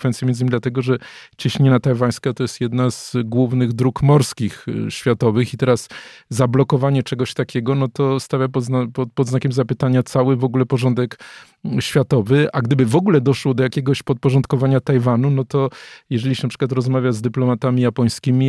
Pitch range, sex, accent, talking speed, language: 125-135 Hz, male, native, 170 wpm, Polish